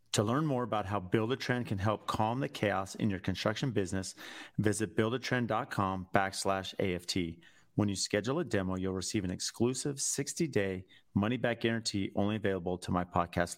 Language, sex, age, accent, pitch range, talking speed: English, male, 40-59, American, 105-125 Hz, 160 wpm